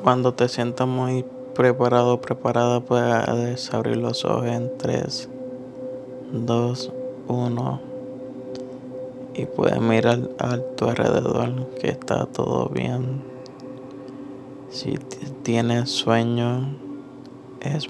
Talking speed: 95 wpm